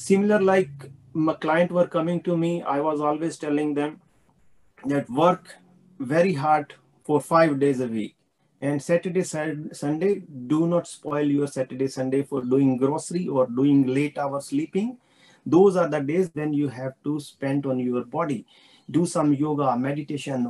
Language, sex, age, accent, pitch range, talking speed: English, male, 30-49, Indian, 140-170 Hz, 160 wpm